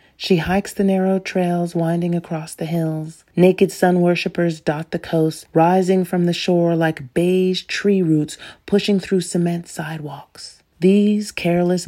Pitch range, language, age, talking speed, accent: 165-195 Hz, English, 40-59, 145 wpm, American